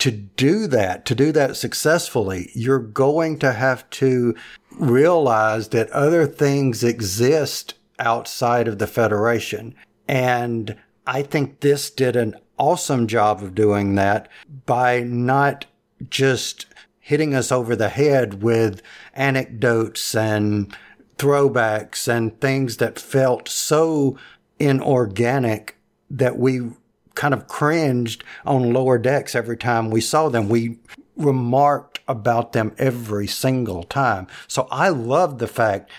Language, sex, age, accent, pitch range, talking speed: English, male, 50-69, American, 115-135 Hz, 125 wpm